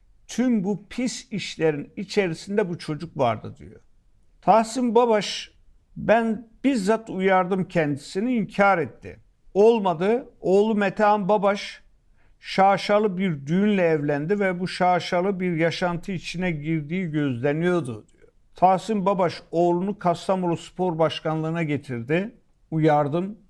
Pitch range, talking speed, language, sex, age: 145-185 Hz, 105 wpm, Turkish, male, 50-69